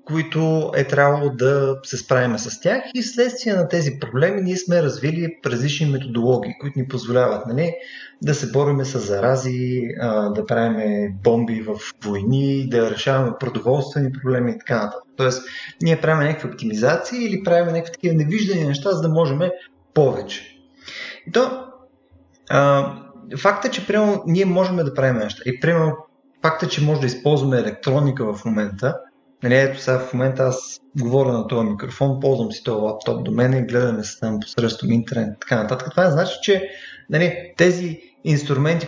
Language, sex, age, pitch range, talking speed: Bulgarian, male, 30-49, 125-180 Hz, 165 wpm